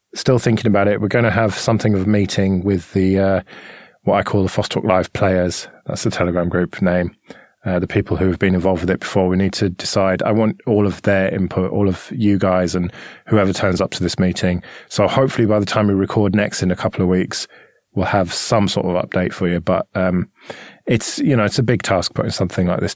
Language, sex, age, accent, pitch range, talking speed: English, male, 20-39, British, 95-110 Hz, 240 wpm